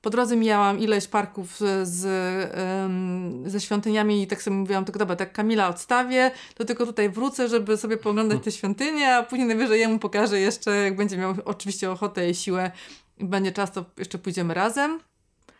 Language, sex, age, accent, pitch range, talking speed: Polish, female, 30-49, native, 195-240 Hz, 175 wpm